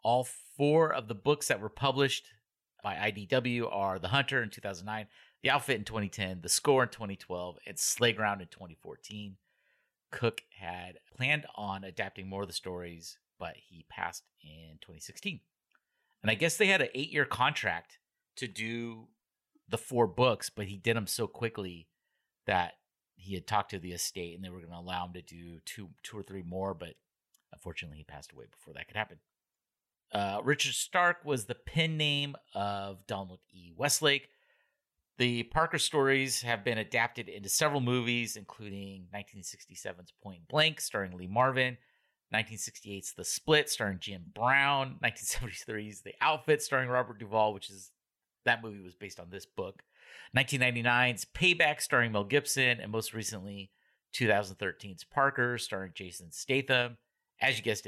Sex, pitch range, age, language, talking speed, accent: male, 95-130 Hz, 30-49, English, 160 wpm, American